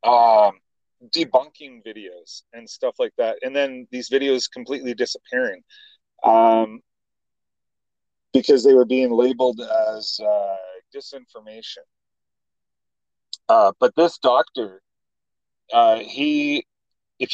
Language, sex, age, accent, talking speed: English, male, 40-59, American, 100 wpm